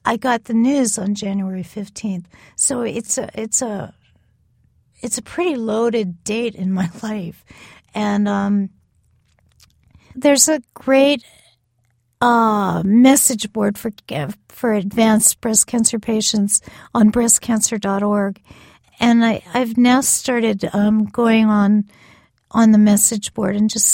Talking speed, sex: 130 wpm, female